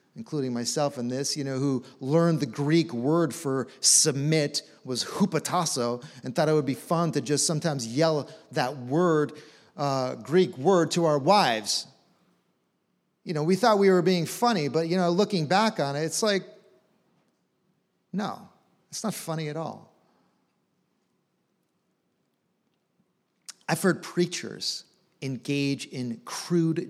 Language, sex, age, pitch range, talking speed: English, male, 40-59, 150-190 Hz, 140 wpm